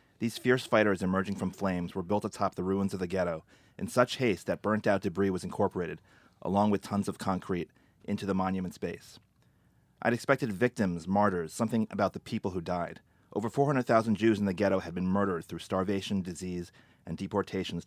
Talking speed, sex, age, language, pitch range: 185 wpm, male, 30-49, English, 95-115 Hz